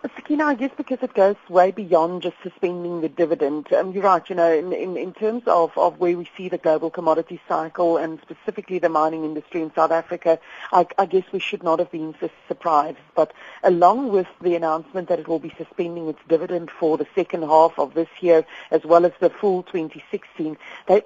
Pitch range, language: 160-190 Hz, English